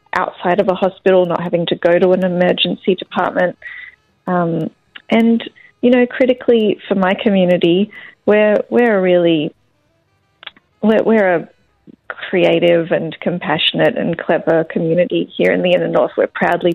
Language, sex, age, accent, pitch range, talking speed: Greek, female, 30-49, Australian, 170-200 Hz, 145 wpm